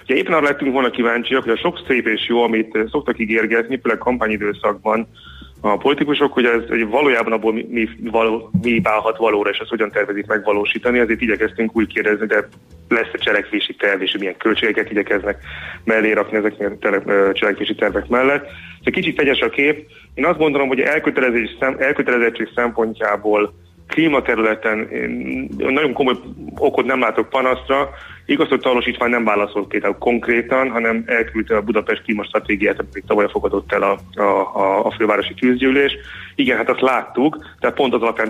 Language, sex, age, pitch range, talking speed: Hungarian, male, 30-49, 105-125 Hz, 165 wpm